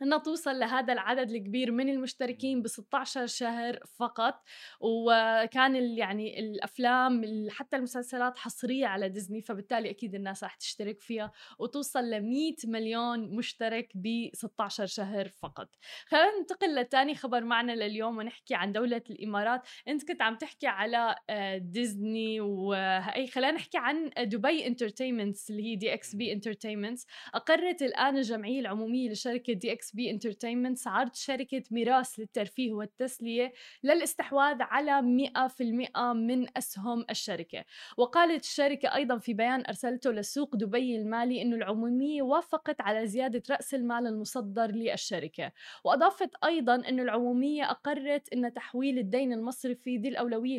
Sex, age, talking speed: female, 20-39, 130 wpm